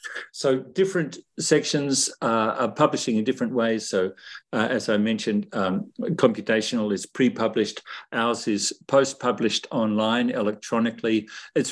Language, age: English, 50-69